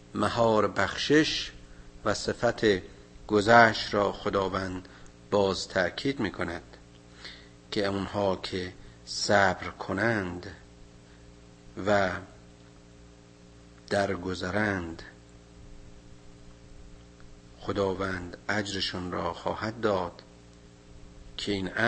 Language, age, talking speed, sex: Persian, 50-69, 70 wpm, male